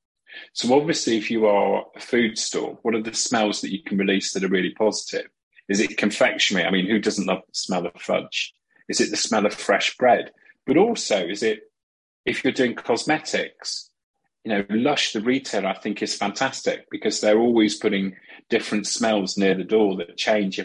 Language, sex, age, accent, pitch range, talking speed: English, male, 30-49, British, 105-175 Hz, 195 wpm